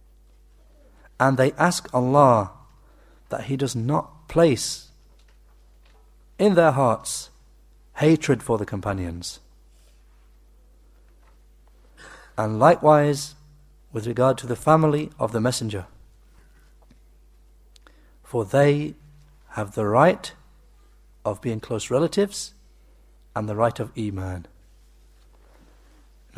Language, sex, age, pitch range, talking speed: English, male, 60-79, 90-140 Hz, 95 wpm